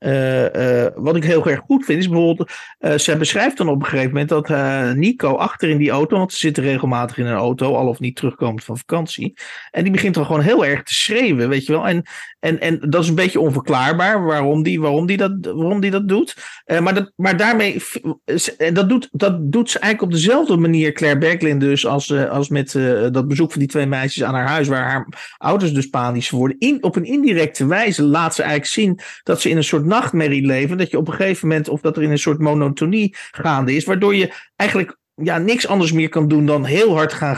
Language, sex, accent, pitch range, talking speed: Dutch, male, Dutch, 140-190 Hz, 240 wpm